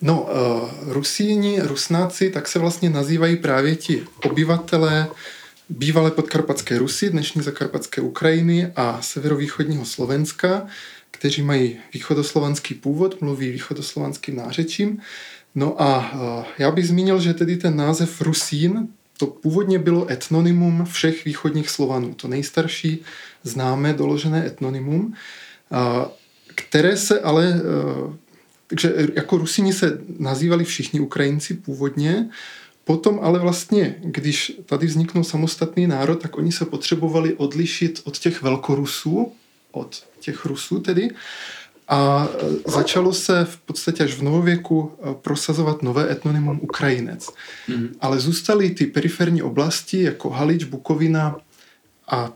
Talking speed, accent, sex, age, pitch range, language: 115 wpm, native, male, 20-39, 140-170 Hz, Czech